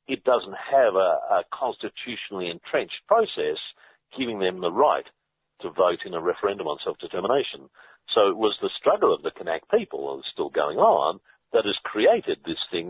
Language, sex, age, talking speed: English, male, 50-69, 170 wpm